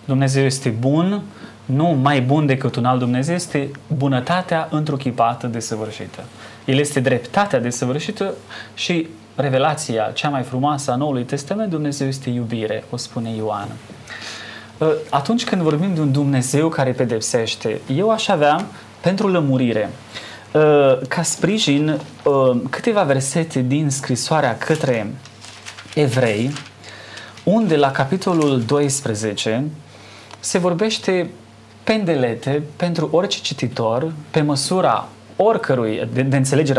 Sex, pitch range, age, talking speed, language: male, 120-160 Hz, 20-39, 115 wpm, Romanian